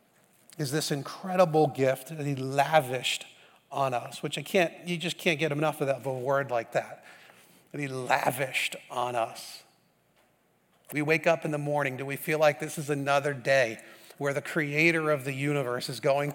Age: 40-59